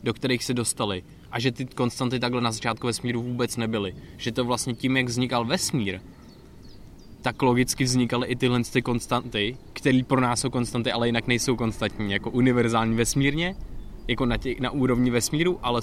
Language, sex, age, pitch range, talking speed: Czech, male, 20-39, 105-120 Hz, 180 wpm